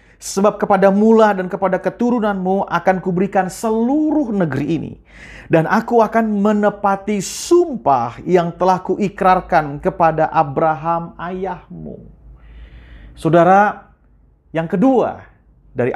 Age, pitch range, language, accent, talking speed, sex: 40-59, 180-225 Hz, Indonesian, native, 100 wpm, male